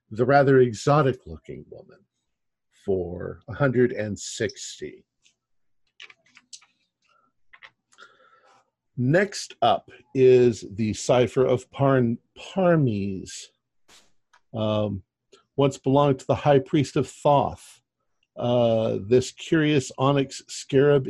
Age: 50-69